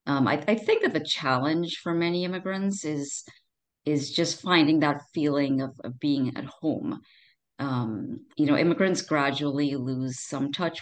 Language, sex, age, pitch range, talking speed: English, female, 40-59, 130-165 Hz, 160 wpm